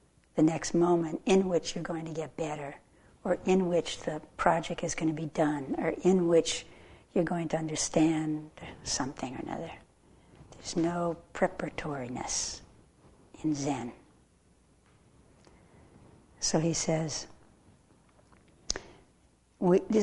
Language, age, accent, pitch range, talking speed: English, 60-79, American, 155-175 Hz, 115 wpm